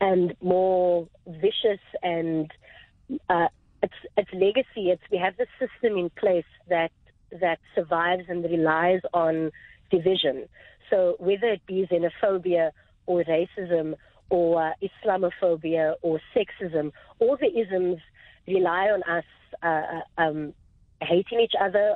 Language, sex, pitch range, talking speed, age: English, female, 170-200 Hz, 125 wpm, 30-49